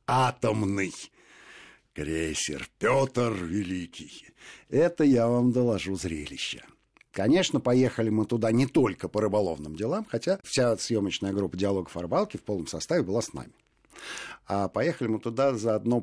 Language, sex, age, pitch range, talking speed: Russian, male, 50-69, 95-130 Hz, 135 wpm